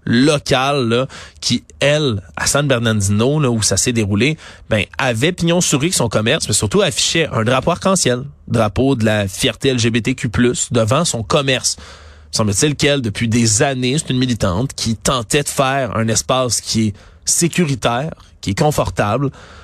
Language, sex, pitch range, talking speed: French, male, 110-145 Hz, 160 wpm